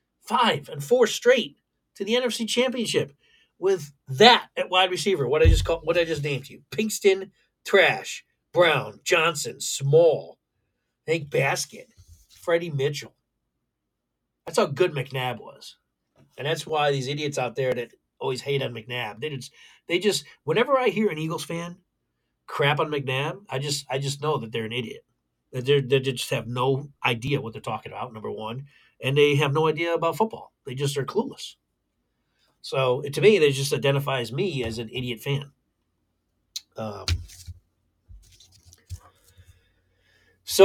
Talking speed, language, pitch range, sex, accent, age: 155 wpm, English, 110-160 Hz, male, American, 40-59